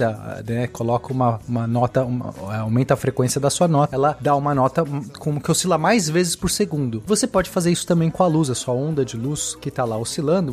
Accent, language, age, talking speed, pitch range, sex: Brazilian, Portuguese, 30-49, 215 wpm, 135-200 Hz, male